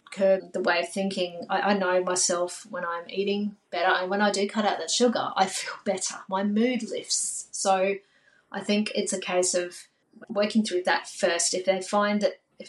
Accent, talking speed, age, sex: Australian, 200 wpm, 30-49, female